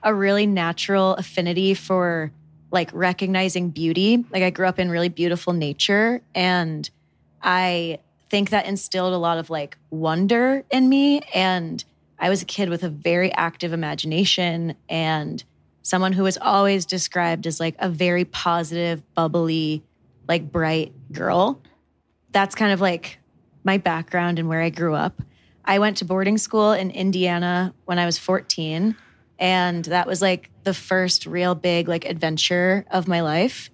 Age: 20-39